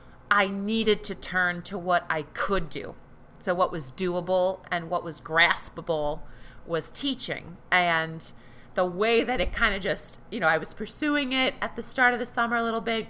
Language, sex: English, female